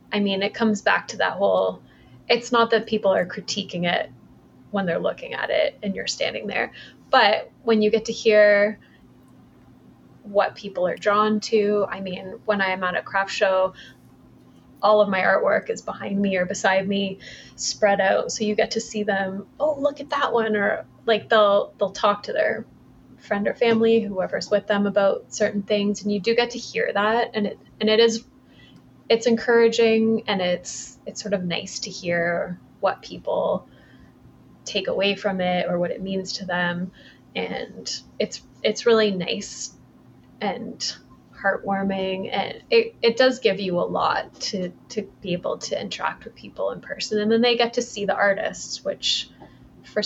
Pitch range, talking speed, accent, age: 190-225 Hz, 180 wpm, American, 20-39